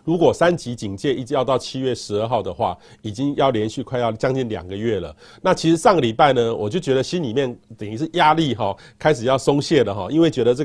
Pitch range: 125-175 Hz